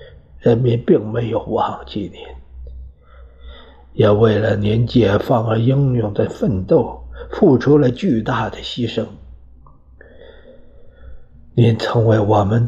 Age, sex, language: 50-69, male, Chinese